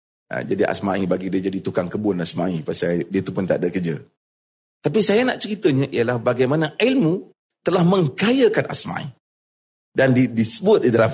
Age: 40-59